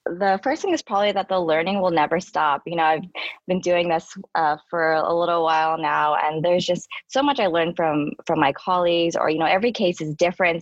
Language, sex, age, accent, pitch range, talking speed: English, female, 20-39, American, 160-190 Hz, 230 wpm